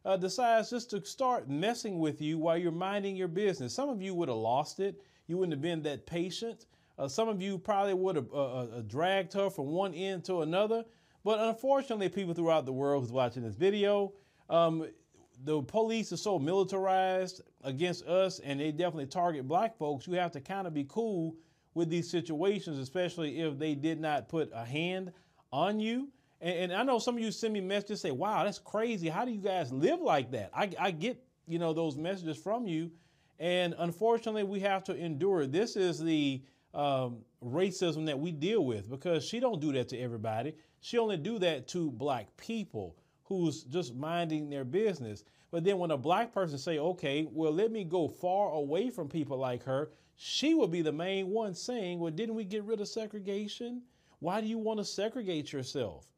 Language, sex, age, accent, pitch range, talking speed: English, male, 30-49, American, 155-200 Hz, 200 wpm